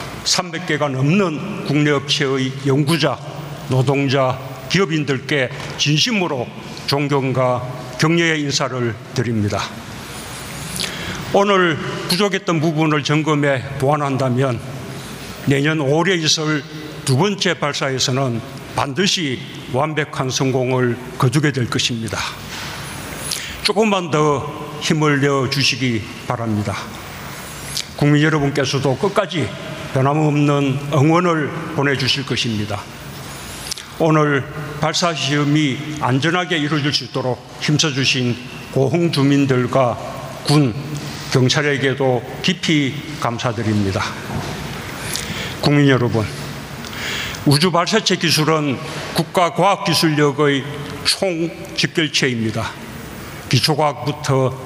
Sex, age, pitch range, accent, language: male, 60-79, 130-155 Hz, native, Korean